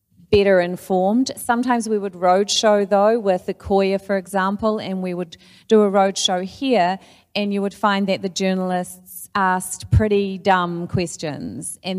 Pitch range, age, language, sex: 165-190 Hz, 40-59, English, female